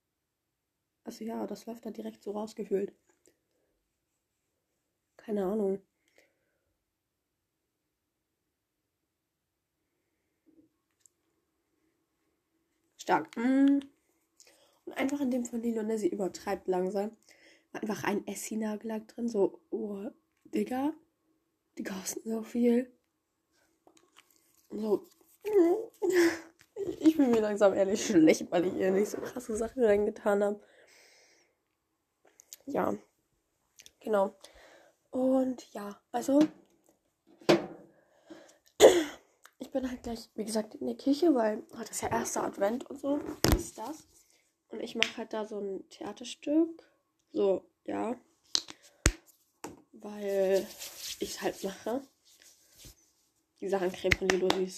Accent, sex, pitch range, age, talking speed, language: German, female, 210-320 Hz, 20-39, 100 wpm, German